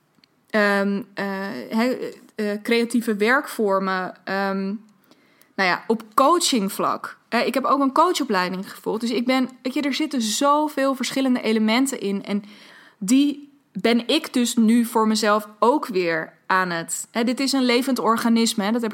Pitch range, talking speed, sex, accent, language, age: 200-245 Hz, 155 wpm, female, Dutch, Dutch, 20-39